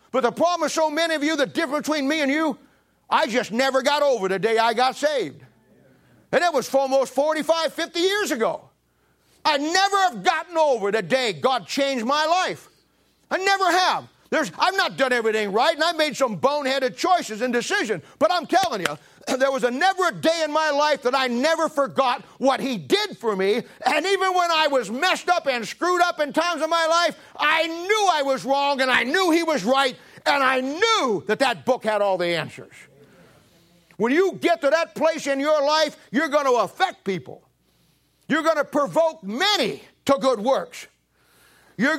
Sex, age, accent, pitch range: male, 40-59, American, 250-325 Hz